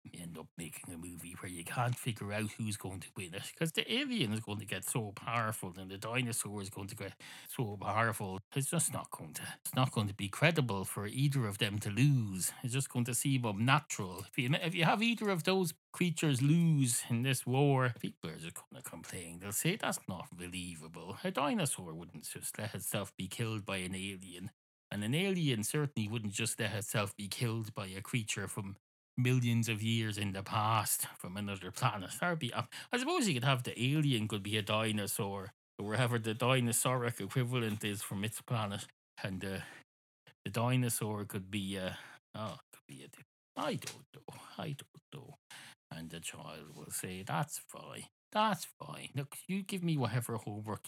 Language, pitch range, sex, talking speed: English, 100-135 Hz, male, 200 wpm